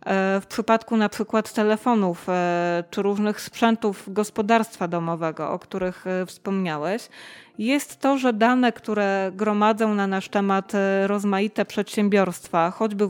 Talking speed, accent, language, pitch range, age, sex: 115 wpm, native, Polish, 195-235 Hz, 20-39, female